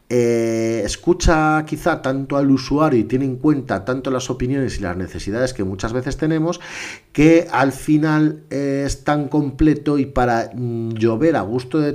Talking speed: 165 wpm